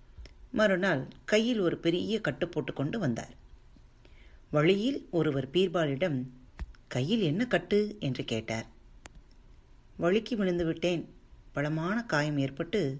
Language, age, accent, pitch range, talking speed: Tamil, 30-49, native, 135-200 Hz, 95 wpm